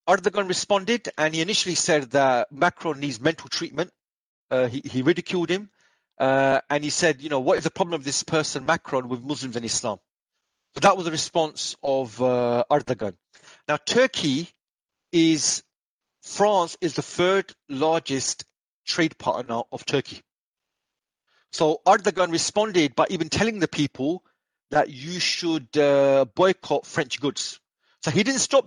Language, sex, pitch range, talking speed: English, male, 135-180 Hz, 155 wpm